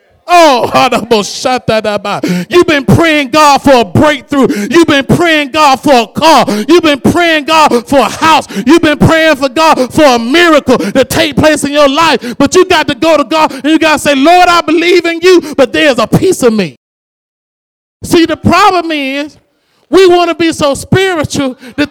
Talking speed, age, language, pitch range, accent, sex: 210 wpm, 40-59, English, 250-320 Hz, American, male